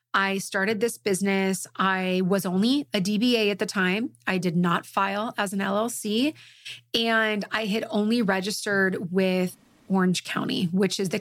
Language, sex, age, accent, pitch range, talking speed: English, female, 30-49, American, 180-215 Hz, 160 wpm